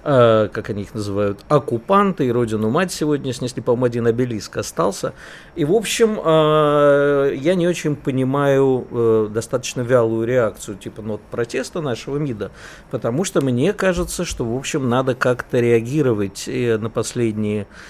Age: 50-69